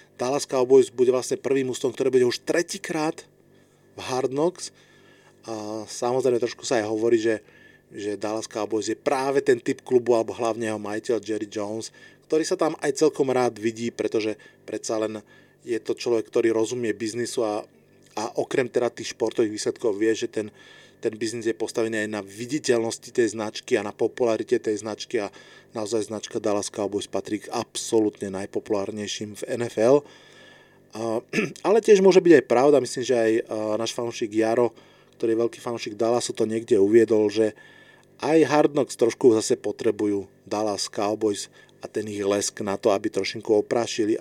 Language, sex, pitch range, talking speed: Slovak, male, 110-150 Hz, 165 wpm